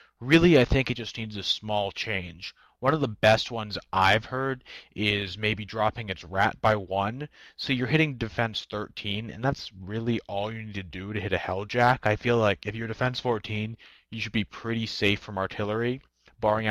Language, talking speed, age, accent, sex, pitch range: English, 200 wpm, 30-49, American, male, 100-125 Hz